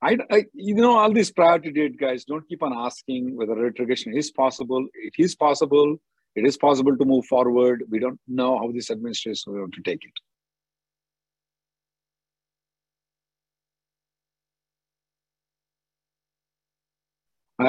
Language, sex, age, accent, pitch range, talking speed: English, male, 50-69, Indian, 120-155 Hz, 130 wpm